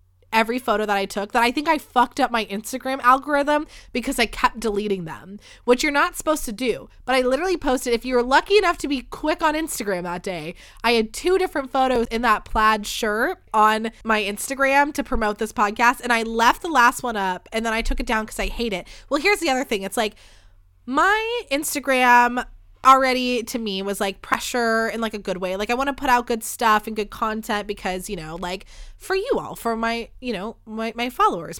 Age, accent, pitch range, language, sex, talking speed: 20-39, American, 210-275 Hz, English, female, 225 wpm